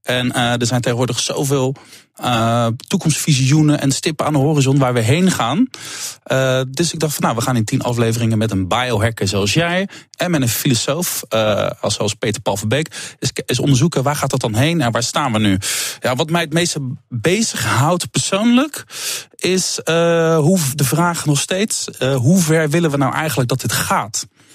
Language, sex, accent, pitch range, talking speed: Dutch, male, Dutch, 115-160 Hz, 190 wpm